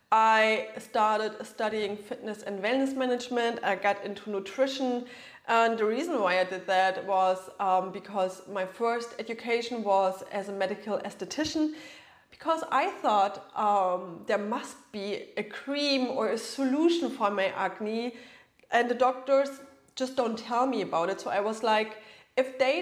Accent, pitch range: German, 200-245 Hz